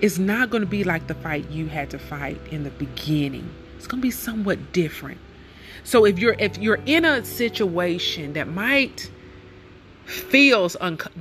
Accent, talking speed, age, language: American, 180 wpm, 30-49, English